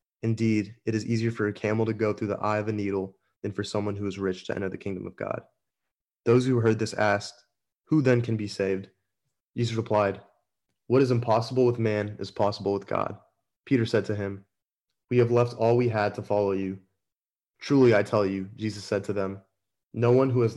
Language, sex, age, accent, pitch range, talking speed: English, male, 20-39, American, 100-115 Hz, 215 wpm